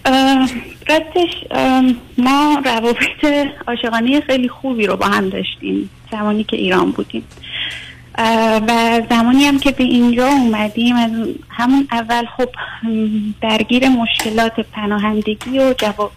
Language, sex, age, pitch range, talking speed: Persian, female, 30-49, 215-260 Hz, 110 wpm